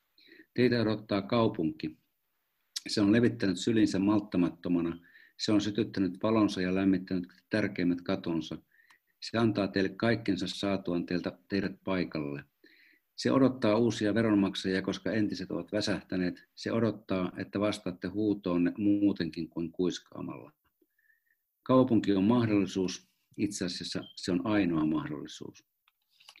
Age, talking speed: 50-69, 110 wpm